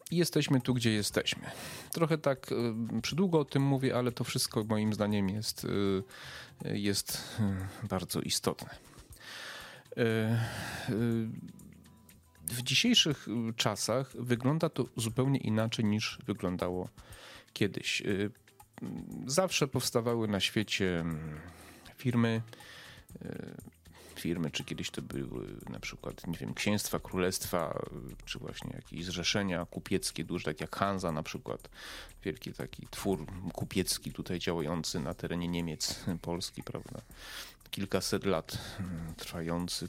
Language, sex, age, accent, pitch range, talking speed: Polish, male, 40-59, native, 90-115 Hz, 110 wpm